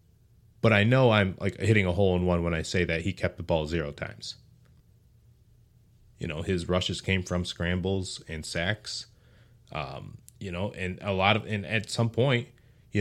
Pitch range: 90-115 Hz